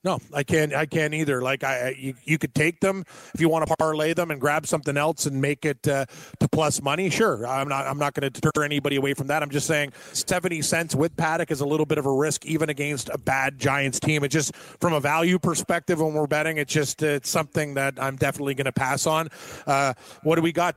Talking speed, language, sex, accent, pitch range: 250 wpm, English, male, American, 140-165 Hz